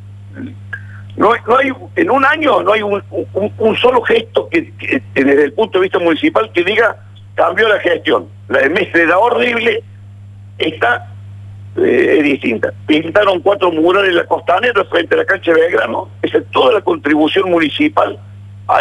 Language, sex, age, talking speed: Spanish, male, 50-69, 165 wpm